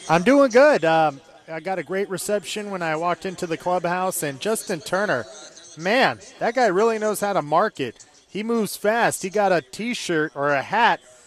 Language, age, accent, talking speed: English, 30-49, American, 190 wpm